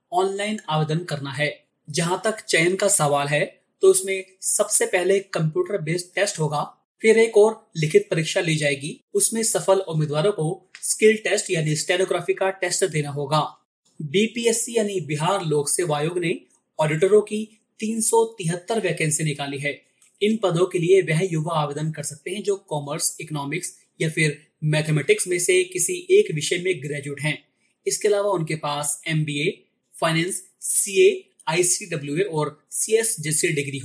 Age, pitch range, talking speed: 30-49, 150-195 Hz, 155 wpm